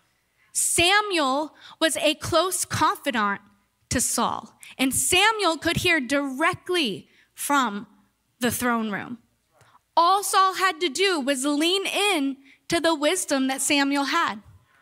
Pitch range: 250-315 Hz